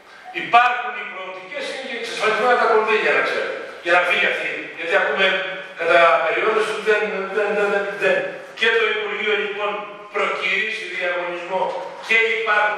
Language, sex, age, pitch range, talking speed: Greek, male, 50-69, 175-245 Hz, 140 wpm